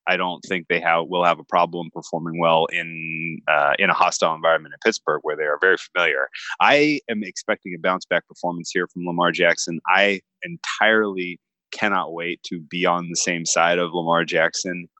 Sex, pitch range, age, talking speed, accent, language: male, 85-95 Hz, 20-39, 185 wpm, American, English